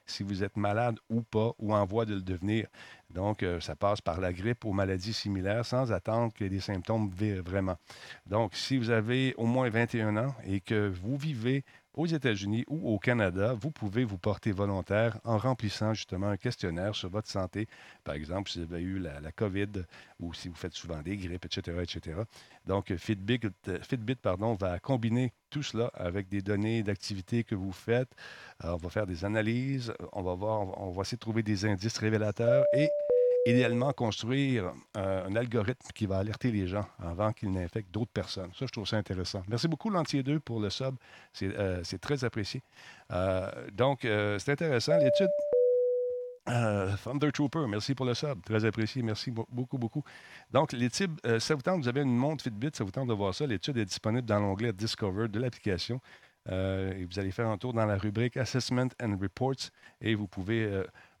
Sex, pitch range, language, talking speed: male, 100-125 Hz, French, 200 wpm